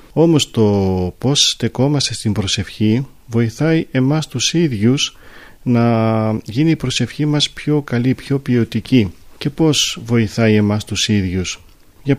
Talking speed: 130 wpm